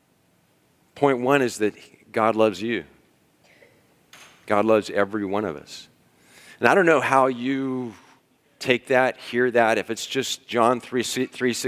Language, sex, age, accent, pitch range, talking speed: English, male, 40-59, American, 100-120 Hz, 145 wpm